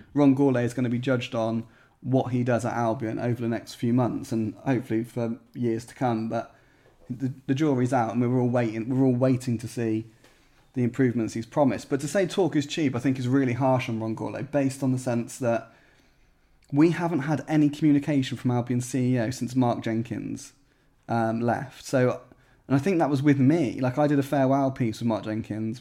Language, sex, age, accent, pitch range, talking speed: English, male, 20-39, British, 115-135 Hz, 210 wpm